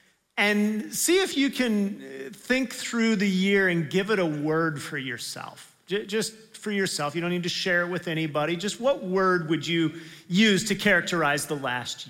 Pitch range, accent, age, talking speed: 170-210 Hz, American, 40-59, 185 wpm